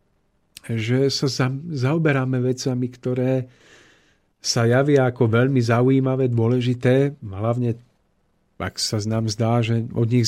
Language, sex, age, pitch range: Slovak, male, 40-59, 115-135 Hz